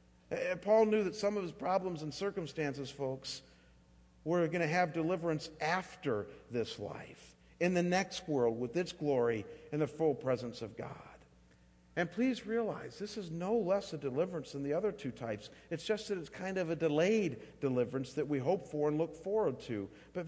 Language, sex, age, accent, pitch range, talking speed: English, male, 50-69, American, 130-180 Hz, 185 wpm